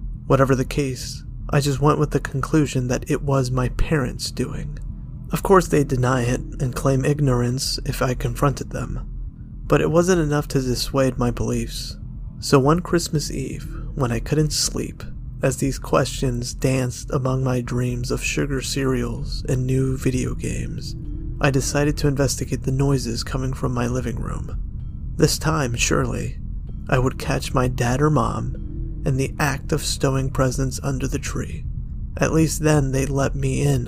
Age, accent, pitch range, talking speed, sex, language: 30-49, American, 125-145 Hz, 165 wpm, male, English